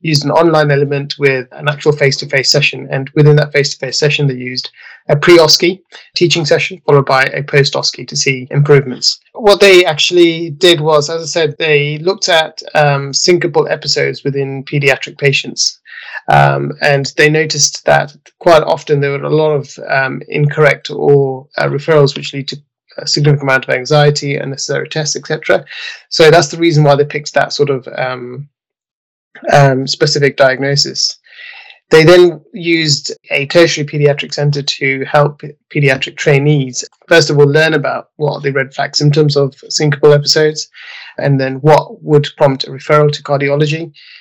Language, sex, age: English, male, 20-39